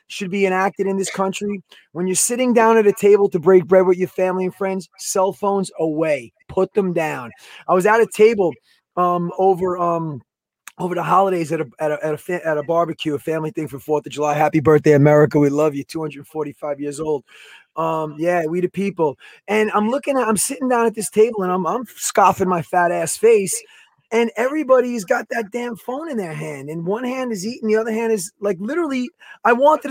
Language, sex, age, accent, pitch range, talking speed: English, male, 20-39, American, 170-245 Hz, 215 wpm